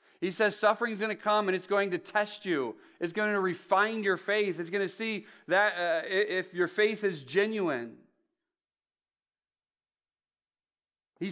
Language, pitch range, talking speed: English, 155-205 Hz, 160 wpm